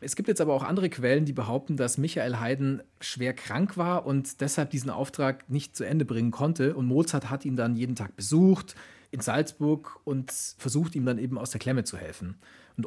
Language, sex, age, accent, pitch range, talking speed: German, male, 40-59, German, 115-160 Hz, 210 wpm